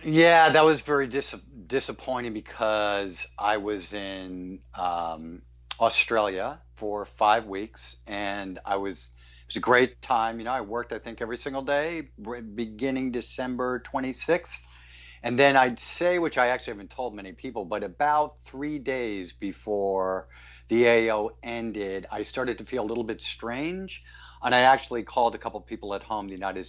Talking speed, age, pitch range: 170 wpm, 50-69, 95-125 Hz